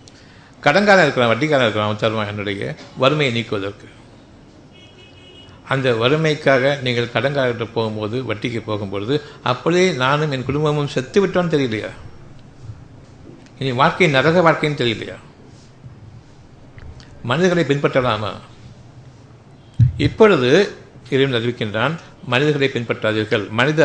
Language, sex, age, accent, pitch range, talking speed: Tamil, male, 60-79, native, 115-145 Hz, 70 wpm